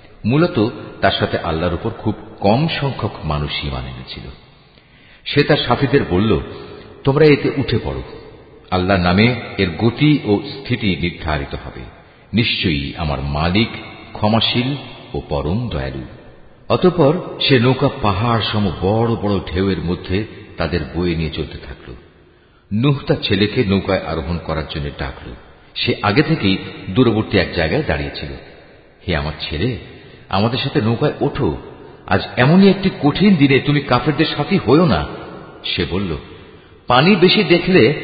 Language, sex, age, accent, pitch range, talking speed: Bengali, male, 50-69, native, 85-125 Hz, 130 wpm